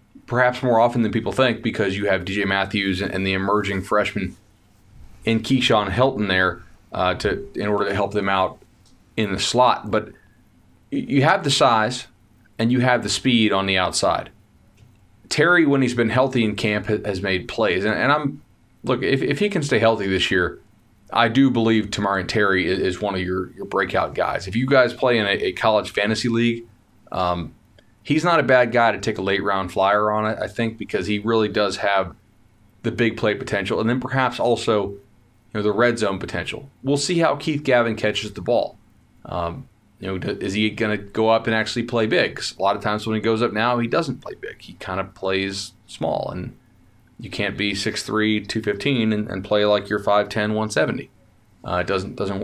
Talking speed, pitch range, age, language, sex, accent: 200 wpm, 100-120 Hz, 30-49, English, male, American